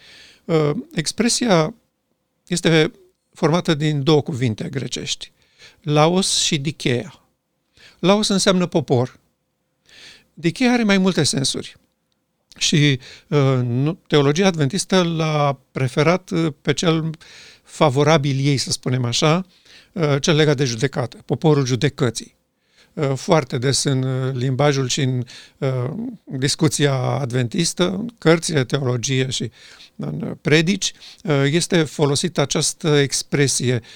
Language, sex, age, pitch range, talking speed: Romanian, male, 50-69, 135-175 Hz, 100 wpm